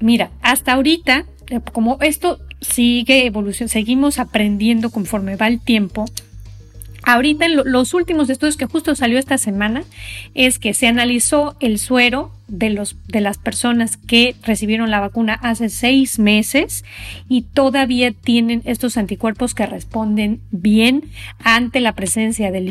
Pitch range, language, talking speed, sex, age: 215-265 Hz, Spanish, 135 wpm, female, 30-49